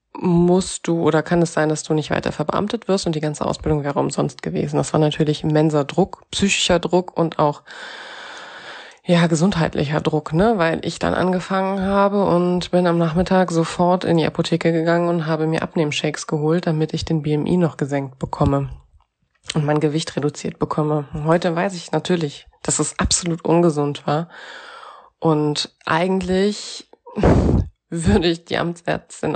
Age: 20-39